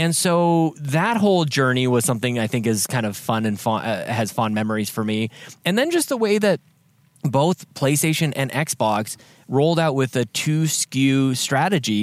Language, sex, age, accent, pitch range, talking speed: English, male, 20-39, American, 120-155 Hz, 190 wpm